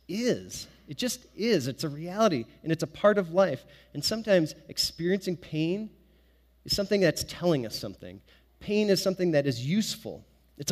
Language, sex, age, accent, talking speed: English, male, 30-49, American, 170 wpm